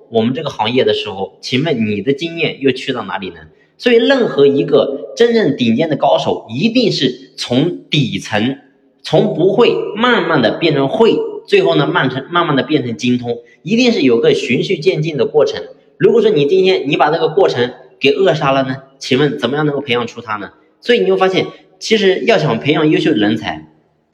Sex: male